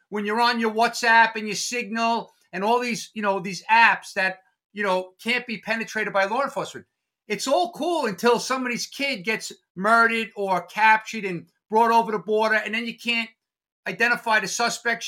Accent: American